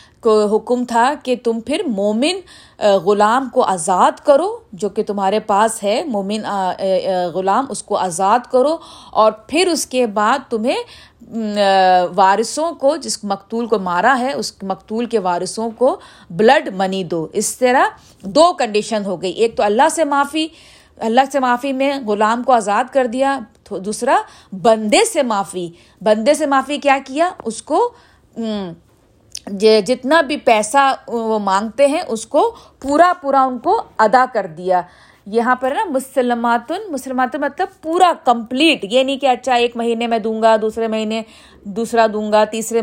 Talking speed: 160 wpm